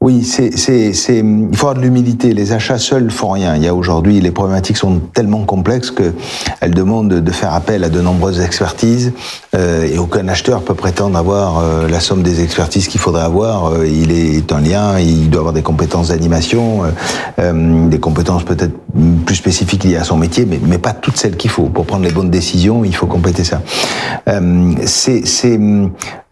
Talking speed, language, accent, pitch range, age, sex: 195 wpm, French, French, 90-115 Hz, 40-59, male